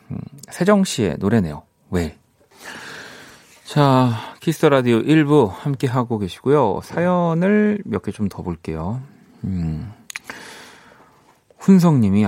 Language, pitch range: Korean, 90-135 Hz